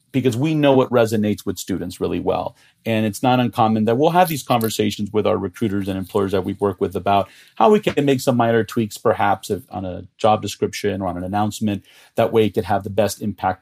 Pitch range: 100-125 Hz